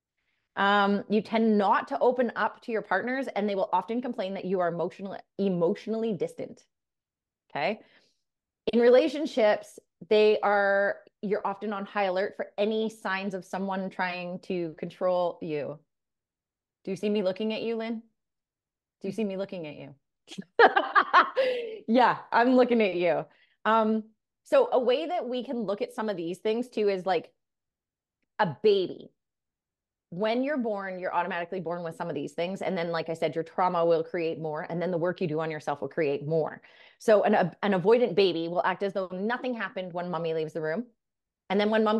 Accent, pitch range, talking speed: American, 175-220 Hz, 185 wpm